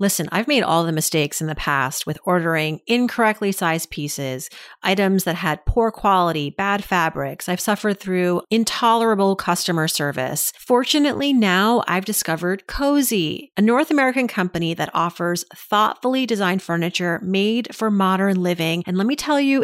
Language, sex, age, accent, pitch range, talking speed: English, female, 40-59, American, 175-230 Hz, 155 wpm